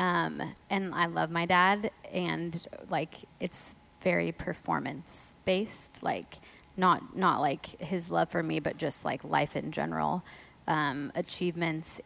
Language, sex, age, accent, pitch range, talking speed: English, female, 20-39, American, 165-190 Hz, 140 wpm